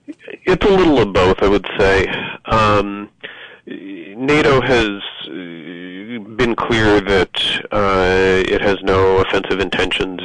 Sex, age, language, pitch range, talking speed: male, 30-49, English, 90-100 Hz, 115 wpm